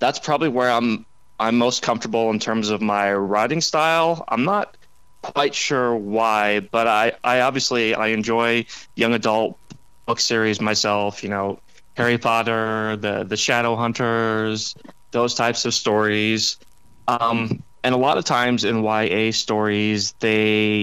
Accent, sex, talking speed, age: American, male, 145 wpm, 20-39